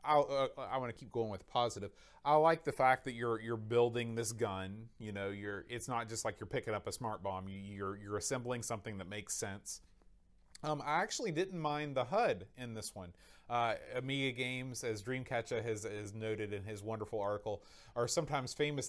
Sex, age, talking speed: male, 30-49, 205 wpm